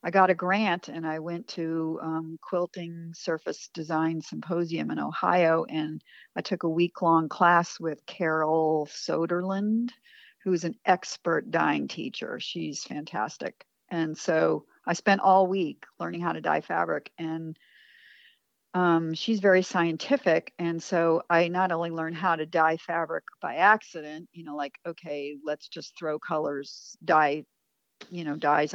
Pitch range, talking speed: 155-180 Hz, 150 wpm